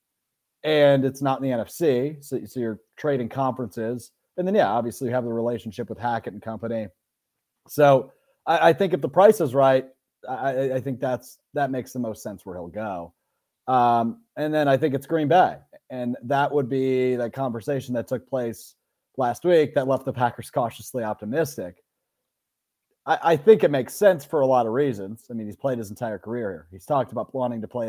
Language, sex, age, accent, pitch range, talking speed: English, male, 30-49, American, 115-145 Hz, 200 wpm